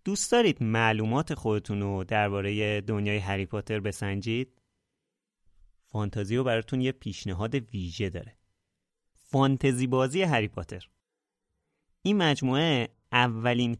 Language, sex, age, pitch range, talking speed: Persian, male, 30-49, 100-140 Hz, 95 wpm